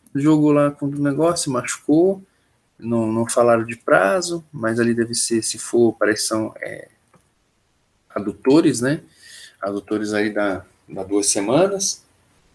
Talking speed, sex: 140 wpm, male